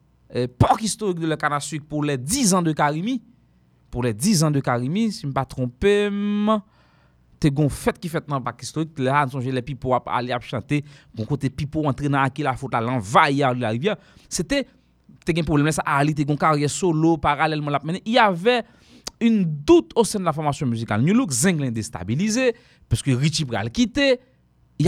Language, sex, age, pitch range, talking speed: English, male, 30-49, 125-165 Hz, 210 wpm